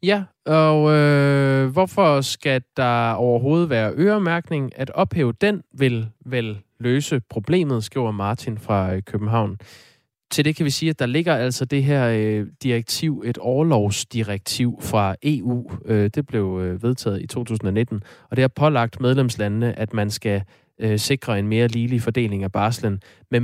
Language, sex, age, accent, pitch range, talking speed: Danish, male, 20-39, native, 105-140 Hz, 140 wpm